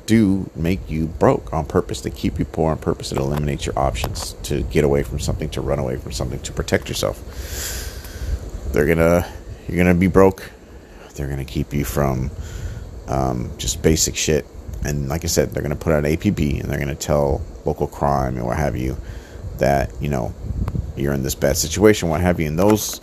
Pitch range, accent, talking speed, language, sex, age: 70-90 Hz, American, 200 wpm, English, male, 30-49